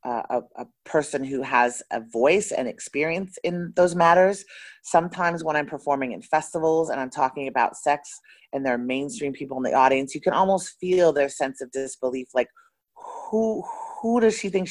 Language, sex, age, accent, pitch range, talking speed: English, female, 30-49, American, 125-175 Hz, 190 wpm